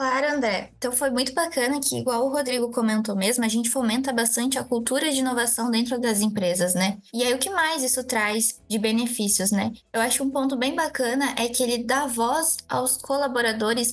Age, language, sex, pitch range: 10-29, Portuguese, female, 225-260 Hz